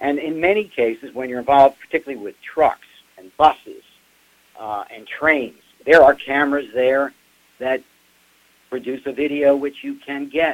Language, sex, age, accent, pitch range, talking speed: English, male, 60-79, American, 115-140 Hz, 155 wpm